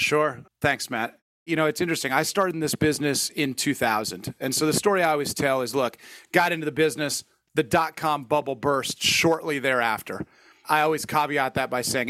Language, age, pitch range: English, 30-49, 140-175 Hz